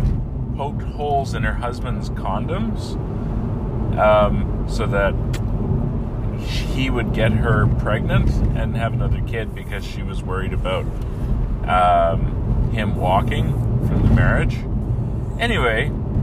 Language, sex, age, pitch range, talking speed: English, male, 30-49, 110-120 Hz, 110 wpm